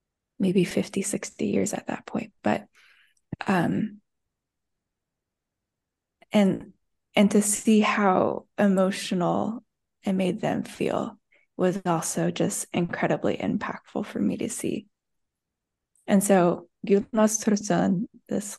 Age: 20-39